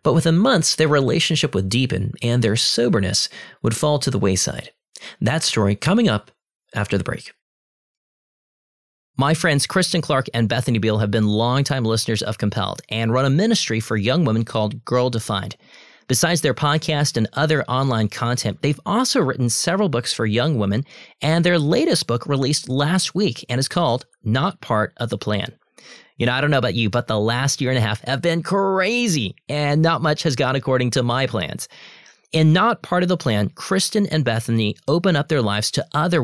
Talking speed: 190 wpm